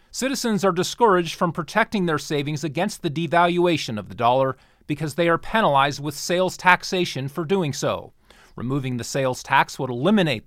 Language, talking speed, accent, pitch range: English, 165 wpm, American, 130-175 Hz